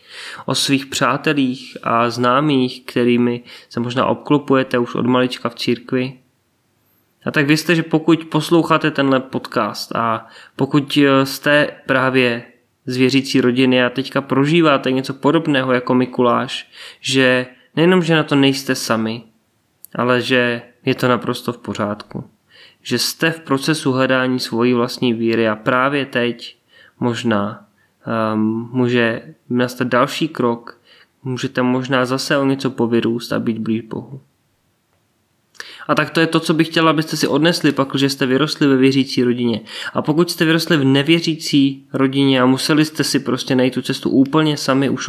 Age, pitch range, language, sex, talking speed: 20-39, 120-145 Hz, Czech, male, 150 wpm